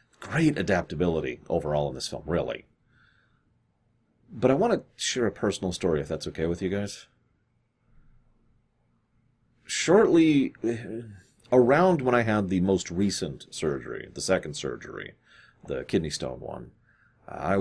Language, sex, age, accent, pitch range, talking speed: English, male, 40-59, American, 85-120 Hz, 130 wpm